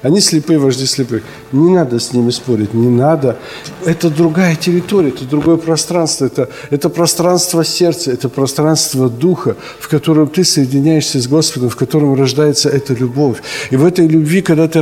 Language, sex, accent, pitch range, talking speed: Ukrainian, male, native, 145-180 Hz, 165 wpm